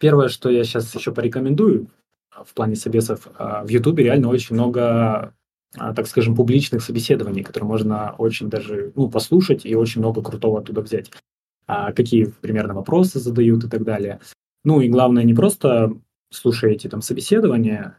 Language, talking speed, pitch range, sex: Russian, 150 wpm, 110-125 Hz, male